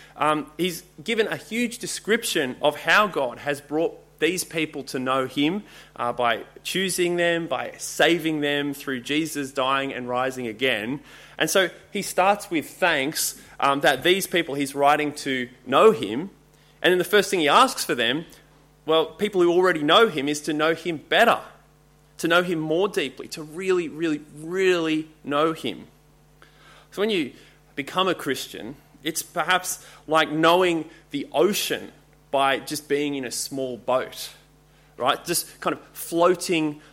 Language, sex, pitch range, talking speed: English, male, 145-185 Hz, 160 wpm